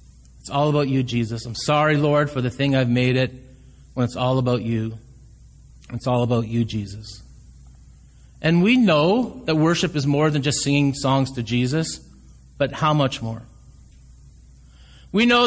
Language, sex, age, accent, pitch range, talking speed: English, male, 30-49, American, 120-190 Hz, 165 wpm